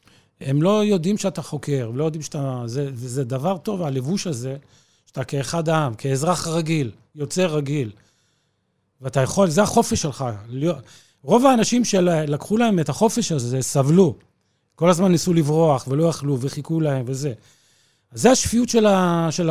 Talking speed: 160 wpm